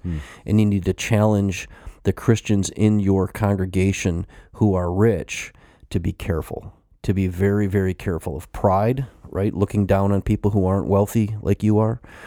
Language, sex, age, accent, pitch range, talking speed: English, male, 30-49, American, 90-110 Hz, 165 wpm